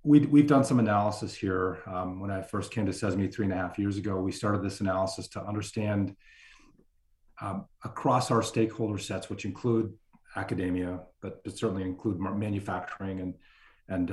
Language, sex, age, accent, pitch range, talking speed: English, male, 40-59, American, 95-120 Hz, 170 wpm